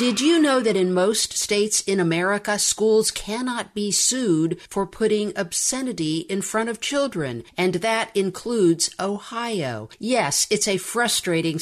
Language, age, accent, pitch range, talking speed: English, 50-69, American, 165-210 Hz, 145 wpm